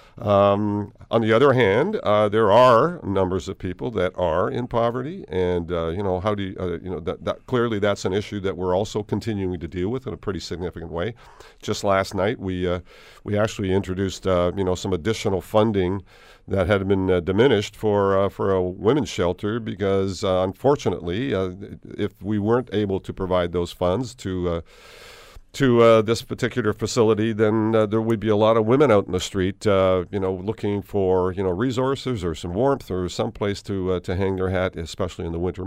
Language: English